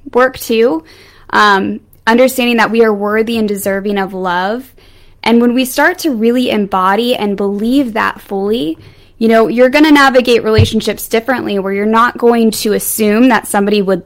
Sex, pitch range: female, 200-245 Hz